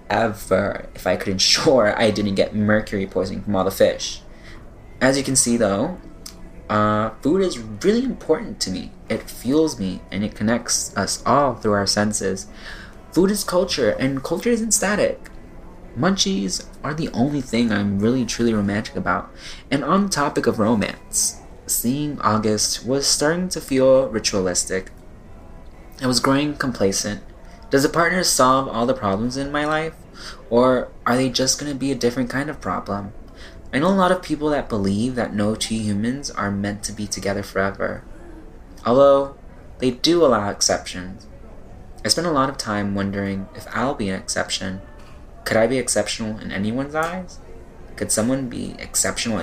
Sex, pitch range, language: male, 100-135 Hz, English